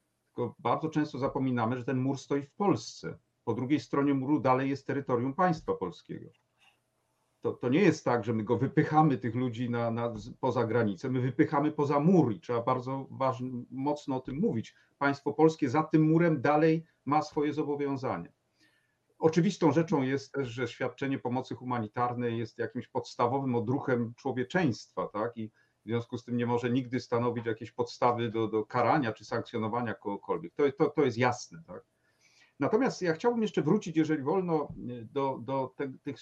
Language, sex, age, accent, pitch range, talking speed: Polish, male, 40-59, native, 120-155 Hz, 170 wpm